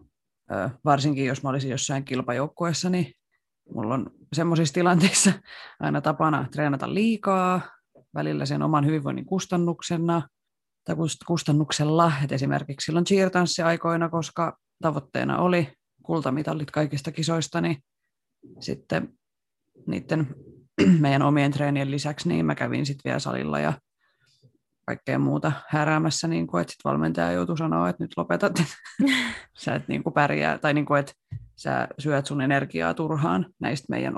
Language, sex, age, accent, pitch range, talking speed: Finnish, female, 30-49, native, 135-165 Hz, 130 wpm